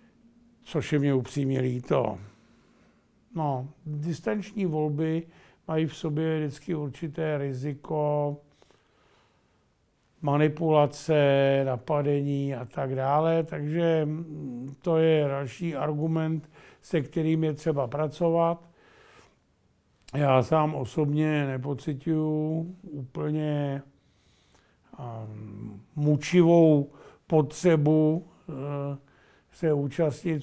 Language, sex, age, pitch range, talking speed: Czech, male, 50-69, 140-160 Hz, 75 wpm